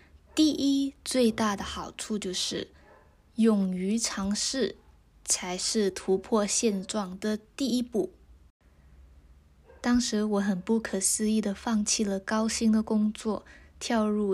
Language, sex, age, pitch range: Chinese, female, 20-39, 180-225 Hz